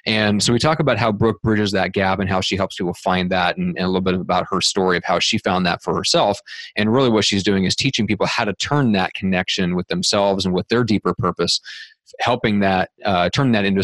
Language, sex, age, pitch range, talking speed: English, male, 30-49, 95-115 Hz, 250 wpm